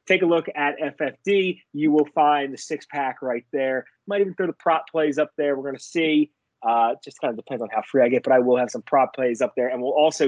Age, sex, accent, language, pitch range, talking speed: 30-49, male, American, English, 135-170 Hz, 275 wpm